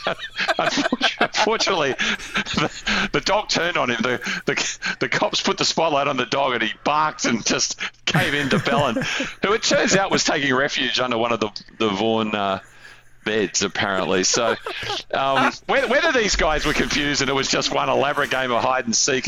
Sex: male